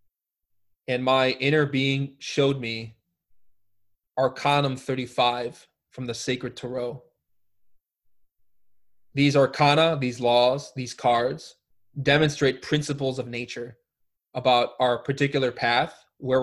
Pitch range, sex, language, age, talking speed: 100-135 Hz, male, English, 20-39, 100 wpm